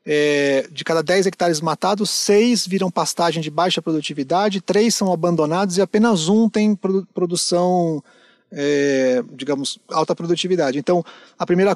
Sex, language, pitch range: male, Portuguese, 165-210 Hz